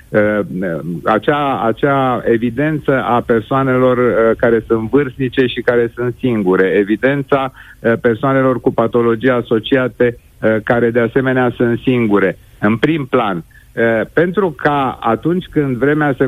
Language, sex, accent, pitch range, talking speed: Romanian, male, native, 110-130 Hz, 115 wpm